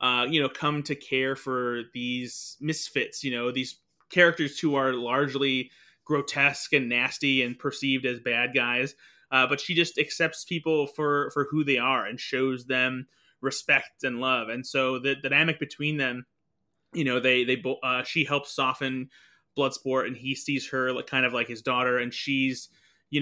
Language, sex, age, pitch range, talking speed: English, male, 20-39, 125-145 Hz, 180 wpm